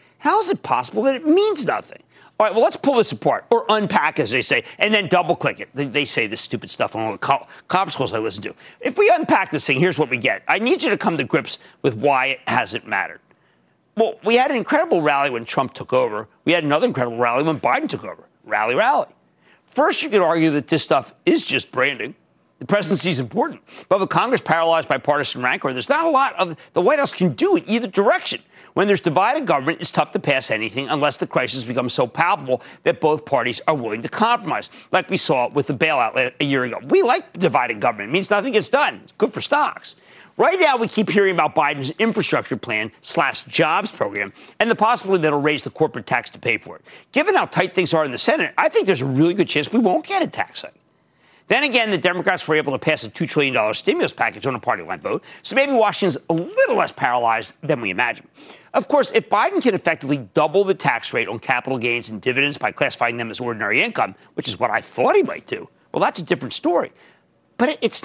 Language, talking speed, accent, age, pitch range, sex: English, 235 wpm, American, 50-69, 140-225 Hz, male